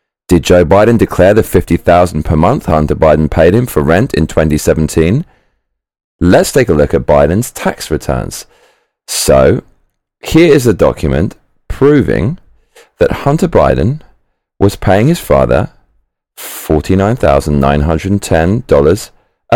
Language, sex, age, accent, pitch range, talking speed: English, male, 30-49, British, 85-120 Hz, 115 wpm